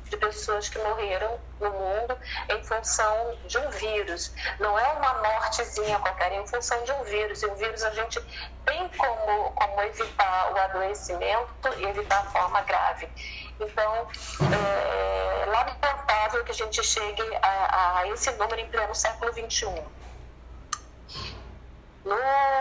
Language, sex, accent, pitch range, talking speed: Portuguese, female, Brazilian, 205-255 Hz, 145 wpm